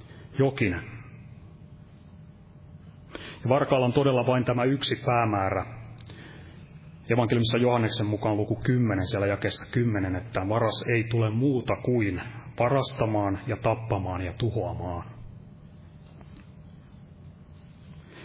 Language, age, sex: Finnish, 30-49, male